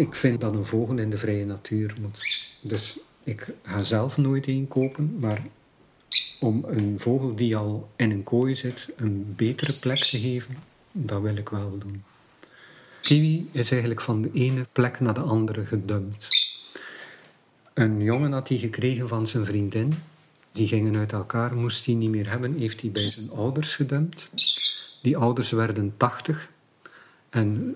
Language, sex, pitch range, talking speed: Dutch, male, 110-130 Hz, 165 wpm